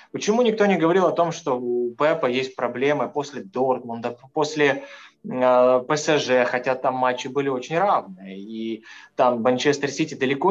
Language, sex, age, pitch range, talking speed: Russian, male, 20-39, 135-180 Hz, 150 wpm